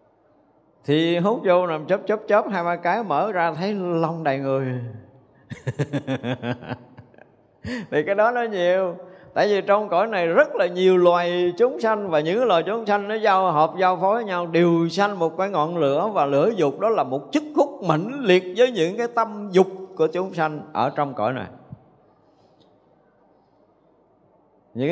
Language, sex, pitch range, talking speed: Vietnamese, male, 135-190 Hz, 175 wpm